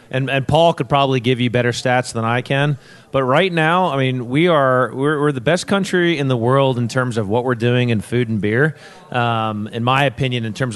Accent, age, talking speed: American, 30-49, 240 wpm